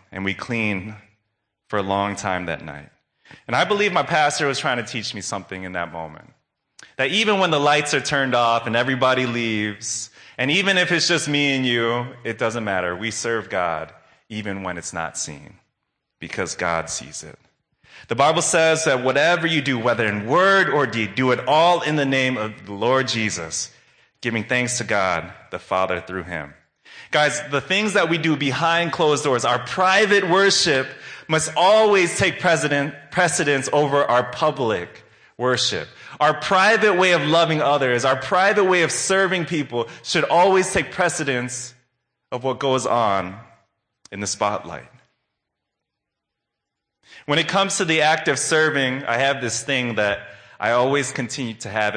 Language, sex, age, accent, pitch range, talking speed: English, male, 30-49, American, 105-155 Hz, 170 wpm